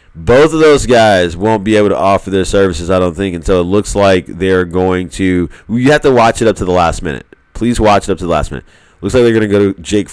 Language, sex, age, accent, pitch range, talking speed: English, male, 30-49, American, 90-110 Hz, 280 wpm